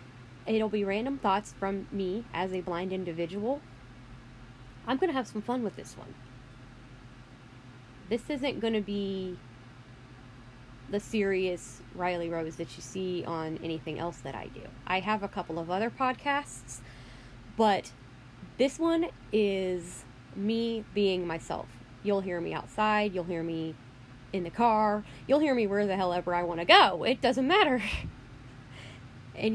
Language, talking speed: English, 150 wpm